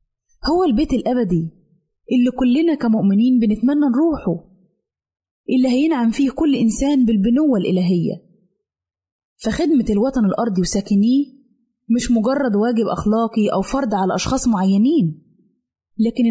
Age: 20-39